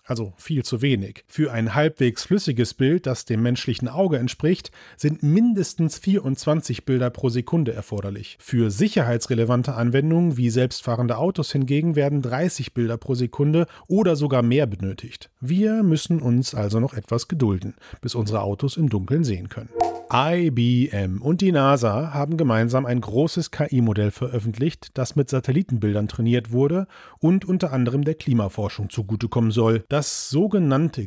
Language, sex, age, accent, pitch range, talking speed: German, male, 40-59, German, 115-160 Hz, 145 wpm